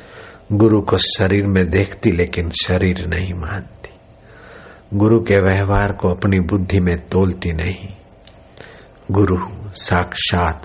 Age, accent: 60-79, native